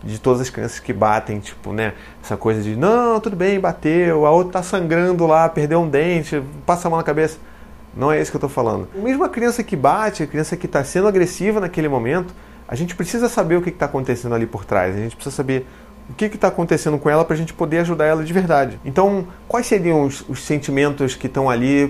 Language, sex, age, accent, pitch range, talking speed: Portuguese, male, 30-49, Brazilian, 125-170 Hz, 230 wpm